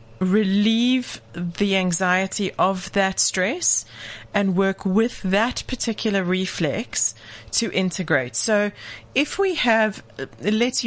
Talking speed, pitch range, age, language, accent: 105 wpm, 175-220 Hz, 30-49, English, British